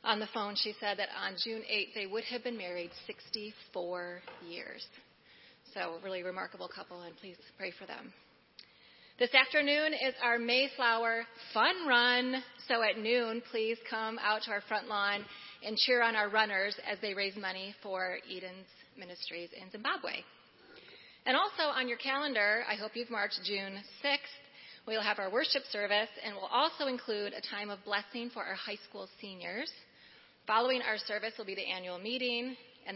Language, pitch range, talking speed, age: English, 195-240 Hz, 175 wpm, 30-49